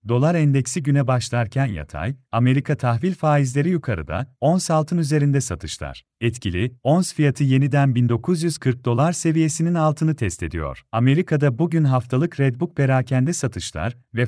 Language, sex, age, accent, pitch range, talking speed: Turkish, male, 40-59, native, 120-155 Hz, 125 wpm